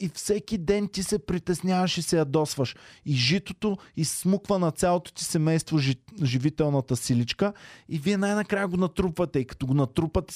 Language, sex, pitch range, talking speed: Bulgarian, male, 125-160 Hz, 155 wpm